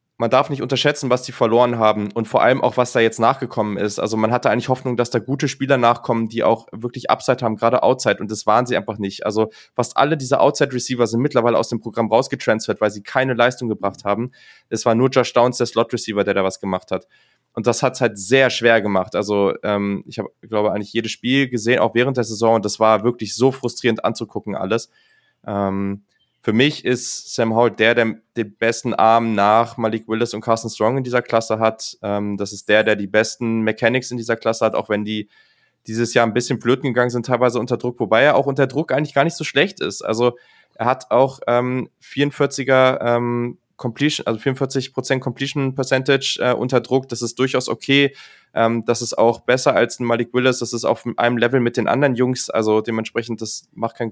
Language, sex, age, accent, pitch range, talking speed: German, male, 20-39, German, 110-130 Hz, 220 wpm